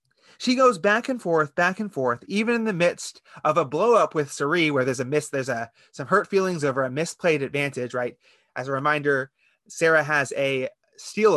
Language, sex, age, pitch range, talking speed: English, male, 30-49, 135-205 Hz, 200 wpm